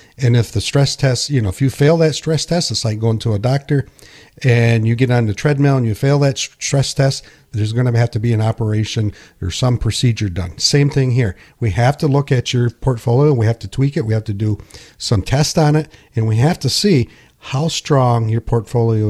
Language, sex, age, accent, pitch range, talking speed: English, male, 50-69, American, 105-130 Hz, 235 wpm